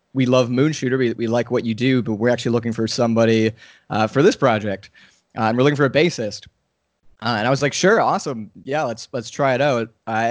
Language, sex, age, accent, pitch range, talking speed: English, male, 20-39, American, 105-125 Hz, 235 wpm